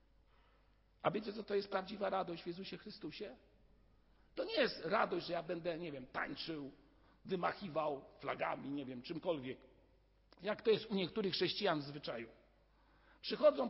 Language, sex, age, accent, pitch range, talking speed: Polish, male, 50-69, native, 170-275 Hz, 150 wpm